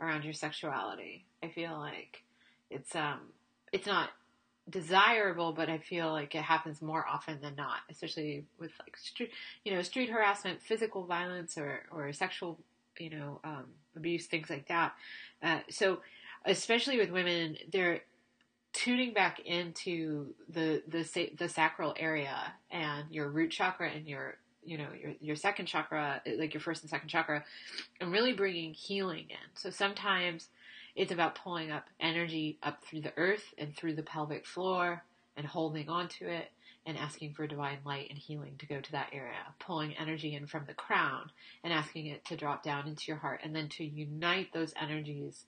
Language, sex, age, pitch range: English, male, 20-39, 150-175 Hz